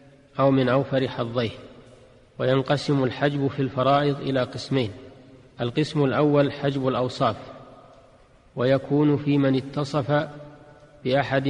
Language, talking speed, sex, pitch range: Arabic, 100 wpm, male, 130-145 Hz